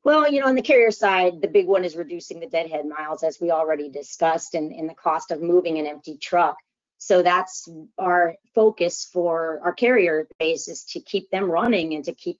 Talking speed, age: 215 wpm, 30-49